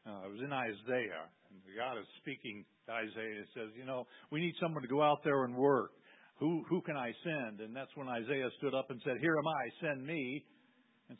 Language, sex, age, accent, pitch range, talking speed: English, male, 50-69, American, 115-155 Hz, 235 wpm